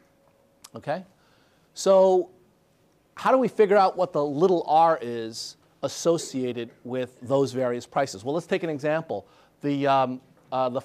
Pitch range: 135-175 Hz